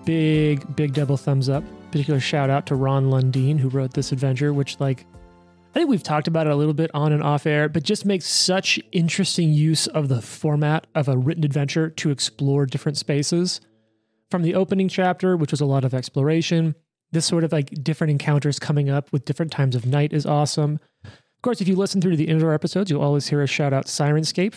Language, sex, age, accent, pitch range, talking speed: English, male, 30-49, American, 140-180 Hz, 215 wpm